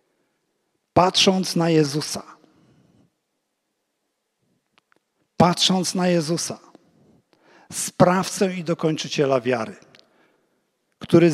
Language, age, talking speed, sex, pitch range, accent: Polish, 50-69, 60 wpm, male, 140-190 Hz, native